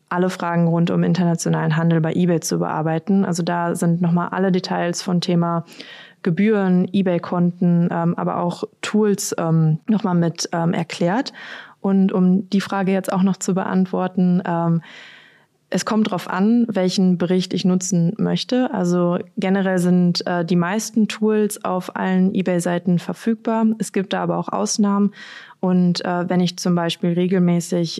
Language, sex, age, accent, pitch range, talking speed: German, female, 20-39, German, 170-195 Hz, 150 wpm